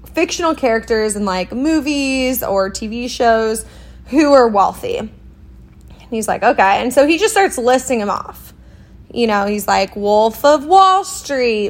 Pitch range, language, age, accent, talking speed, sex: 210-275 Hz, English, 20-39, American, 160 wpm, female